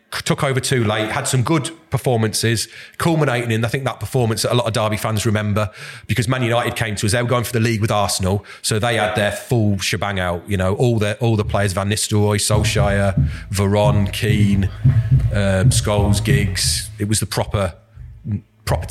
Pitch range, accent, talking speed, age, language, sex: 105-125 Hz, British, 195 wpm, 40-59, English, male